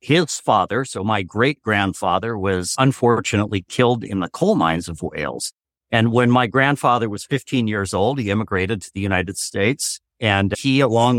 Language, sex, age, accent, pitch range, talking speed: English, male, 50-69, American, 105-130 Hz, 165 wpm